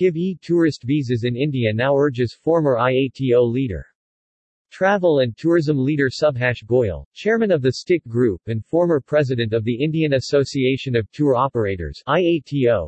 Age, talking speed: 40-59, 150 wpm